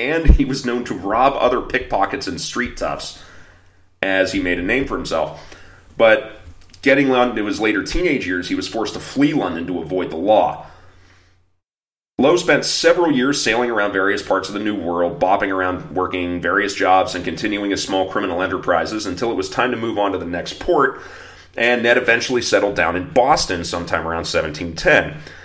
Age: 30-49